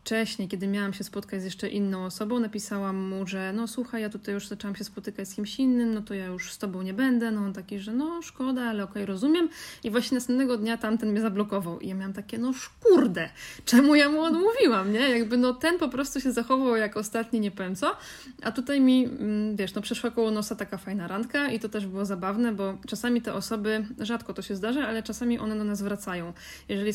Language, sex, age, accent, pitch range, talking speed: Polish, female, 20-39, native, 200-240 Hz, 225 wpm